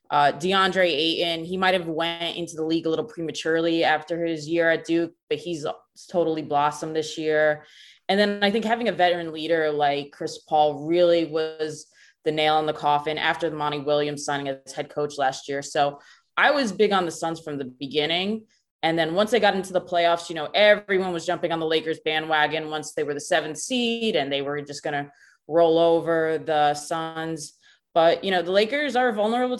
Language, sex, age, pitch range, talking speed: English, female, 20-39, 155-190 Hz, 210 wpm